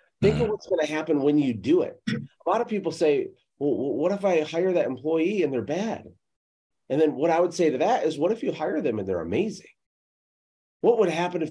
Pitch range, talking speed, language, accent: 135-200 Hz, 240 wpm, English, American